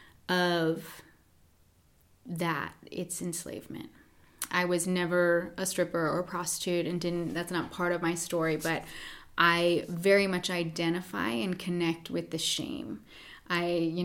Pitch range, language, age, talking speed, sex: 165-180 Hz, English, 20-39, 135 wpm, female